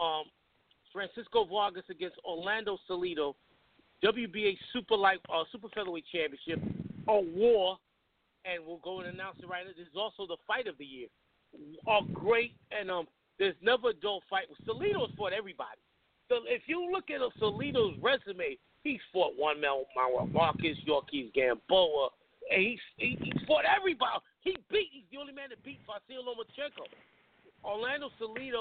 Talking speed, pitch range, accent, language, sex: 160 wpm, 180-250 Hz, American, English, male